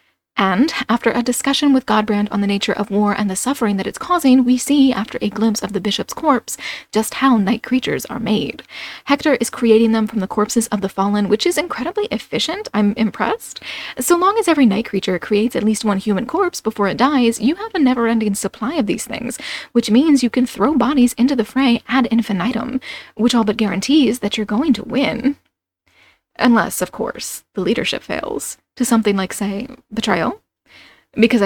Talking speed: 195 wpm